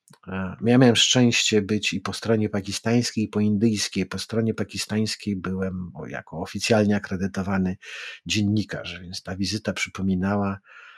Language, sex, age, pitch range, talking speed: Polish, male, 50-69, 95-110 Hz, 125 wpm